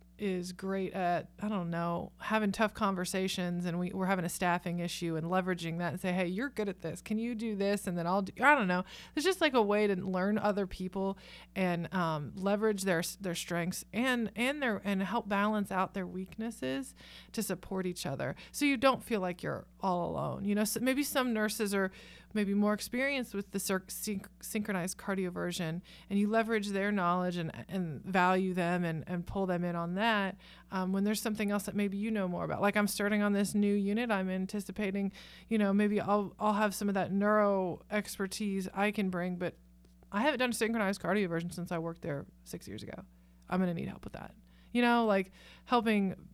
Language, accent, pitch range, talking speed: English, American, 180-210 Hz, 205 wpm